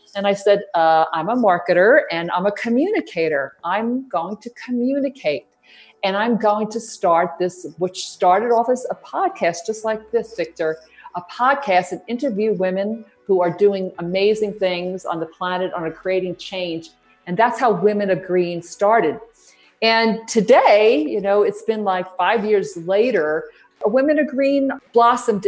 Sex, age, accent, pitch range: female, 50-69, American, 175-215 Hz